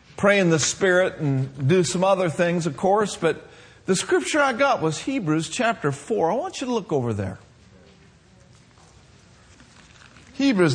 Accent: American